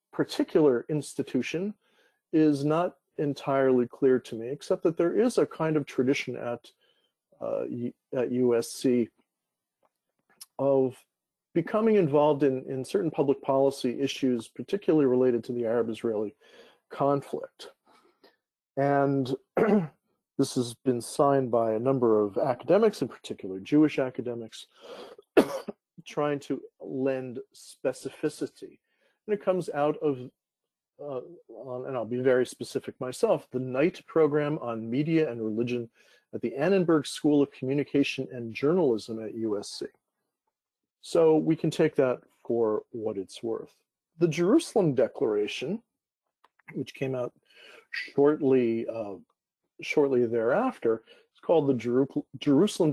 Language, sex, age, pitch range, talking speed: English, male, 40-59, 125-165 Hz, 120 wpm